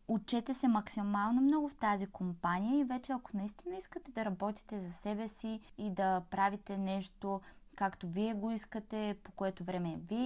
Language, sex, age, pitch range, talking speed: Bulgarian, female, 20-39, 195-240 Hz, 170 wpm